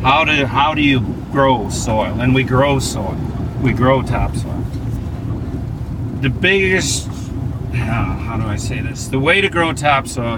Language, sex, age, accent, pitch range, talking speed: English, male, 50-69, American, 115-130 Hz, 155 wpm